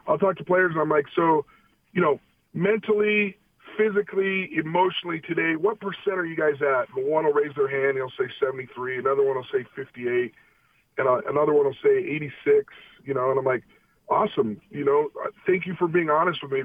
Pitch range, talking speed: 155-210 Hz, 205 wpm